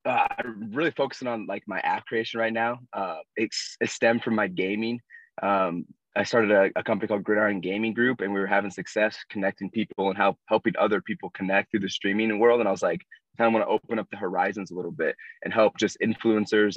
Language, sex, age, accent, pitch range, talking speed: English, male, 20-39, American, 95-115 Hz, 220 wpm